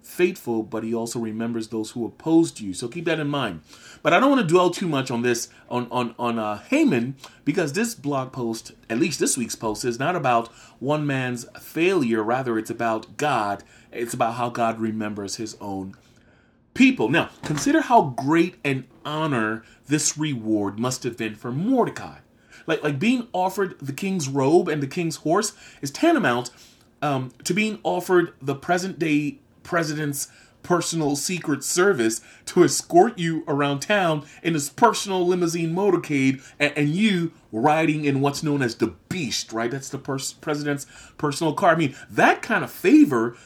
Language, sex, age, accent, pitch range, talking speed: English, male, 30-49, American, 120-170 Hz, 175 wpm